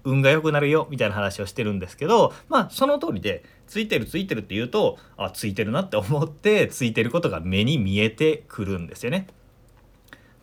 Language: Japanese